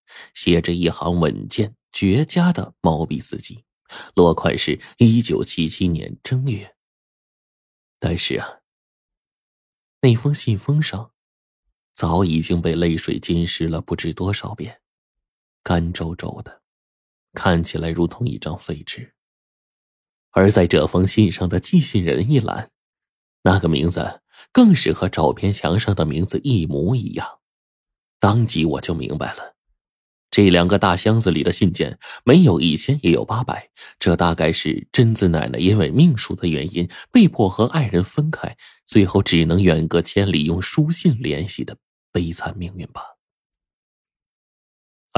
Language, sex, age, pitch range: Chinese, male, 20-39, 85-110 Hz